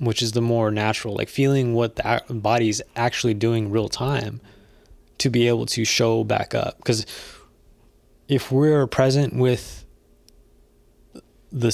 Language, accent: English, American